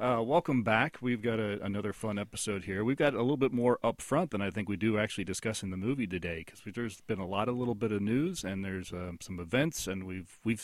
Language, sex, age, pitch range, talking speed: English, male, 40-59, 95-115 Hz, 265 wpm